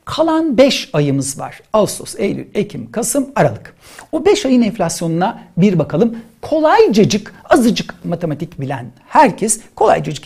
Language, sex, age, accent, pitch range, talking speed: Turkish, male, 60-79, native, 155-250 Hz, 125 wpm